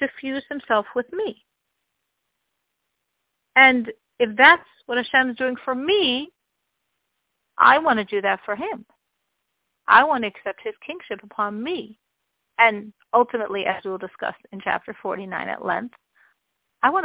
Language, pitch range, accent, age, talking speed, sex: English, 200-250 Hz, American, 50-69, 150 wpm, female